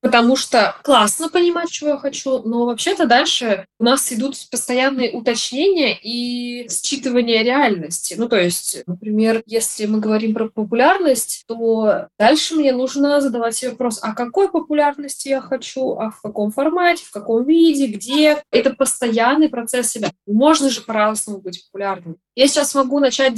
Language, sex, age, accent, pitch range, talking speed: Russian, female, 20-39, native, 205-270 Hz, 155 wpm